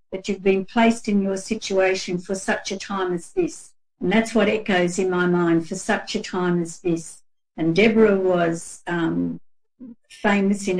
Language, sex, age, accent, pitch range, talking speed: English, female, 60-79, Australian, 180-215 Hz, 180 wpm